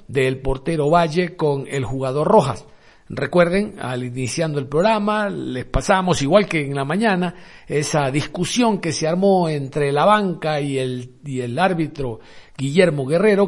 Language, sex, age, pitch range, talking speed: Spanish, male, 50-69, 140-185 Hz, 150 wpm